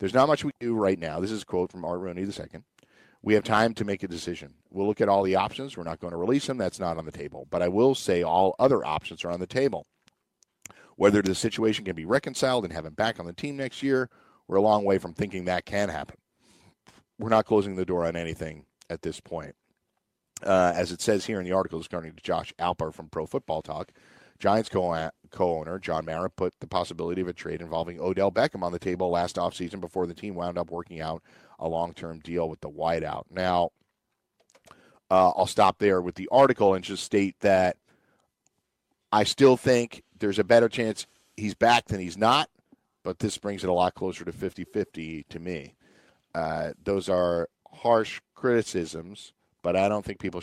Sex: male